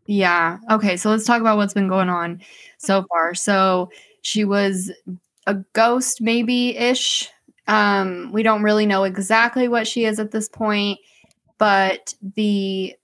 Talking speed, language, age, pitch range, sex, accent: 145 wpm, English, 20-39, 185-215 Hz, female, American